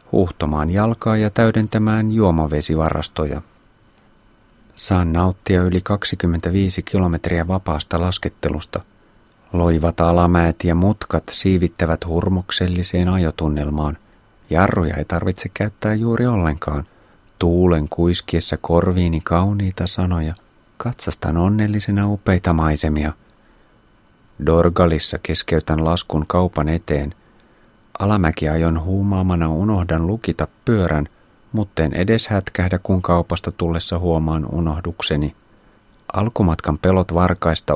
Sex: male